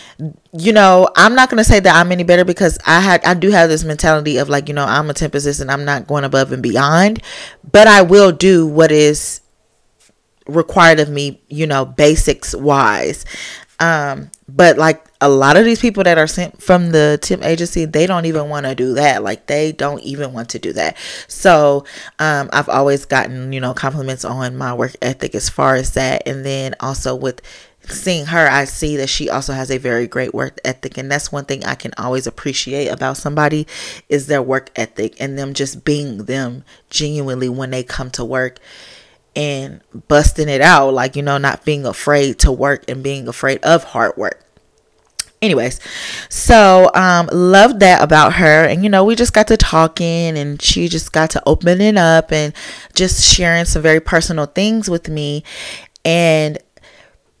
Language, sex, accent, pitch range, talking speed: English, female, American, 135-170 Hz, 190 wpm